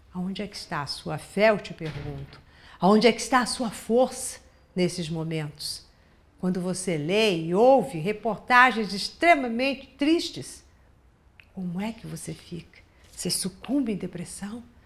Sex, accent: female, Brazilian